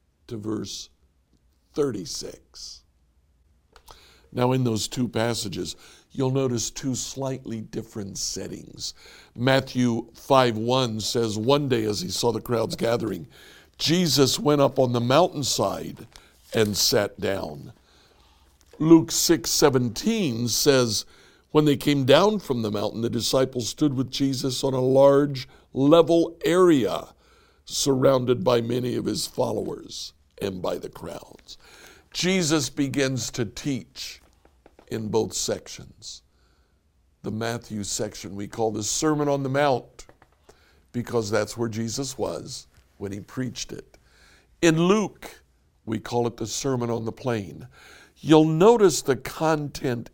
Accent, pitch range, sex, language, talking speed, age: American, 105-140 Hz, male, English, 125 wpm, 60-79